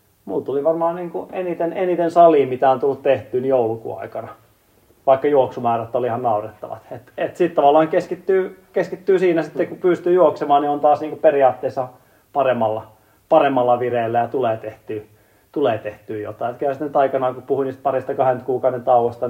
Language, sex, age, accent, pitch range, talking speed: Finnish, male, 30-49, native, 115-145 Hz, 150 wpm